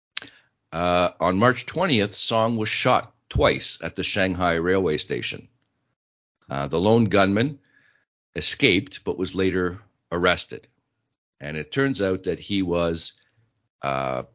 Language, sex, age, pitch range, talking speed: English, male, 50-69, 85-110 Hz, 125 wpm